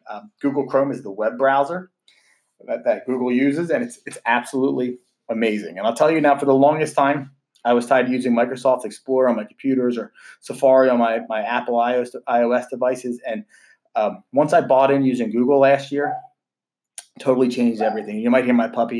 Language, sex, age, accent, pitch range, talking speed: English, male, 30-49, American, 115-135 Hz, 195 wpm